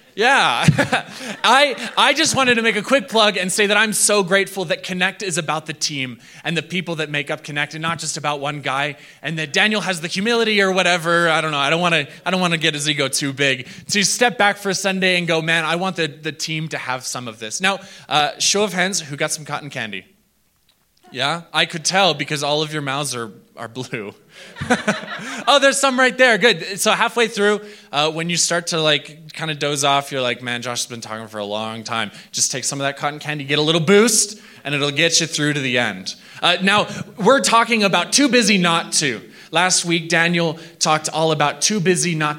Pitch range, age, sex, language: 145-190 Hz, 20-39, male, English